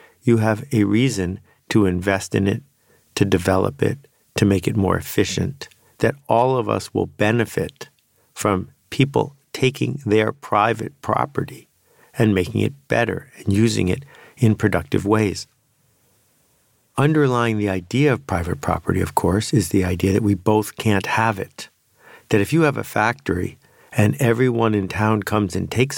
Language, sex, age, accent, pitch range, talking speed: English, male, 50-69, American, 100-125 Hz, 155 wpm